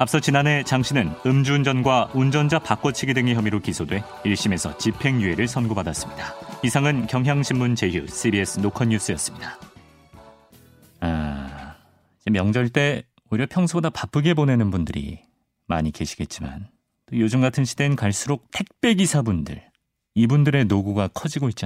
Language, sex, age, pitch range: Korean, male, 40-59, 95-135 Hz